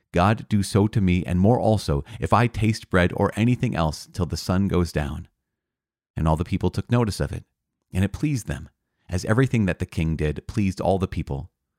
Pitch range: 80-105 Hz